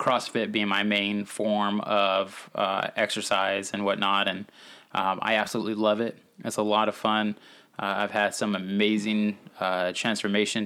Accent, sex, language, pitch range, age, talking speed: American, male, English, 100-105 Hz, 20-39, 160 wpm